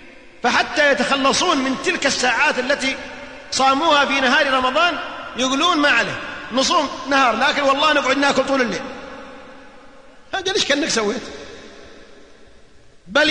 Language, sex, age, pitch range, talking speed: Arabic, male, 30-49, 260-315 Hz, 115 wpm